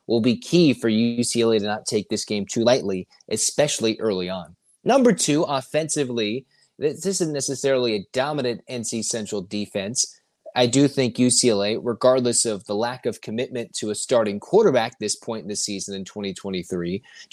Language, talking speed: English, 165 wpm